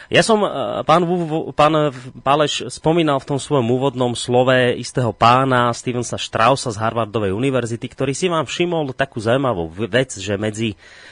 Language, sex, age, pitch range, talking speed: Slovak, male, 30-49, 110-145 Hz, 140 wpm